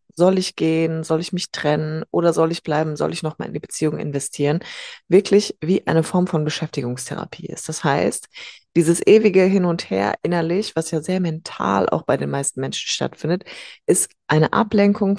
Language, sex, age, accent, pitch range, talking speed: German, female, 20-39, German, 155-205 Hz, 180 wpm